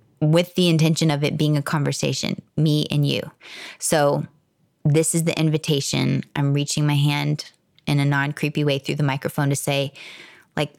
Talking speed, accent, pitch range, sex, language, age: 165 wpm, American, 145-170 Hz, female, English, 20-39